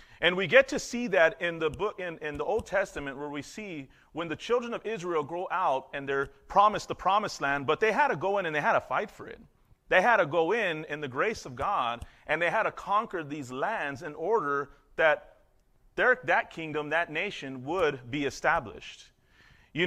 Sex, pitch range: male, 140-185 Hz